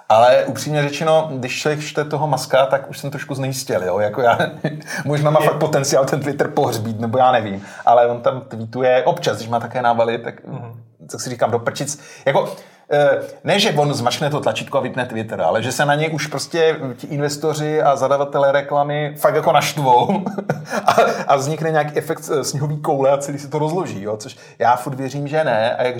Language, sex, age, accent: Czech, male, 30-49, native